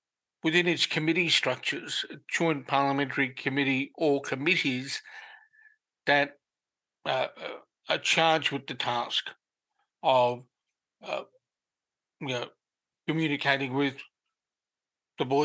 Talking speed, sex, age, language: 95 wpm, male, 50-69, English